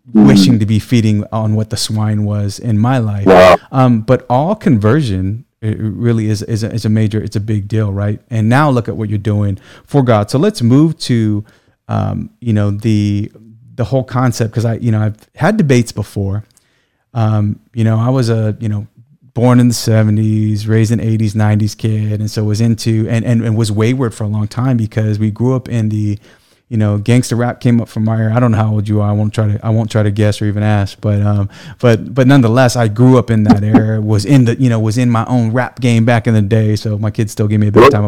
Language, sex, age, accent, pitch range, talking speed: English, male, 30-49, American, 105-125 Hz, 245 wpm